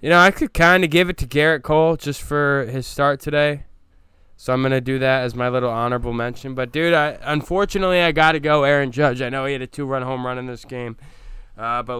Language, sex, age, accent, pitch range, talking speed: English, male, 20-39, American, 110-135 Hz, 250 wpm